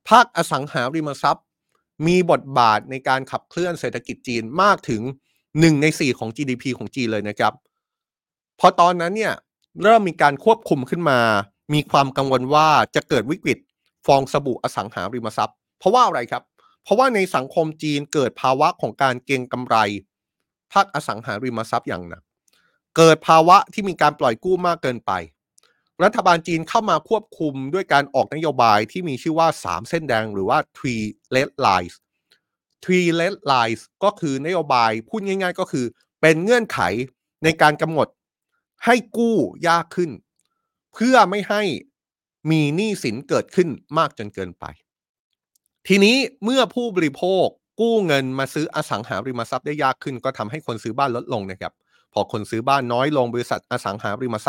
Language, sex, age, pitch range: Thai, male, 20-39, 125-180 Hz